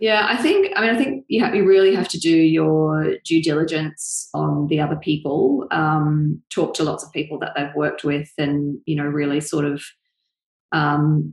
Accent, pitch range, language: Australian, 150-180 Hz, English